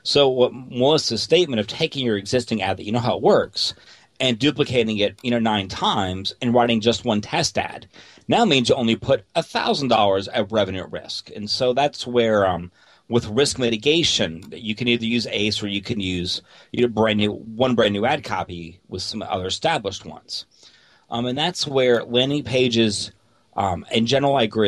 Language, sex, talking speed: English, male, 190 wpm